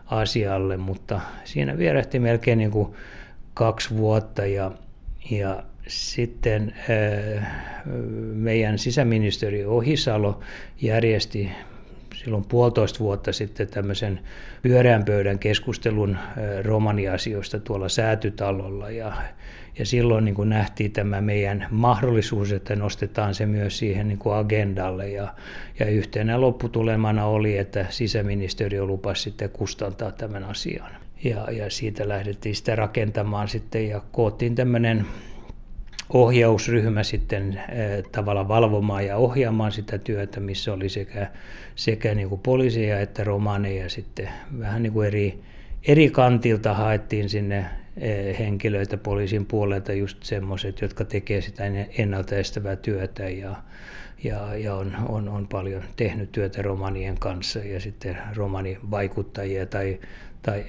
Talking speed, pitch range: 110 wpm, 100-115 Hz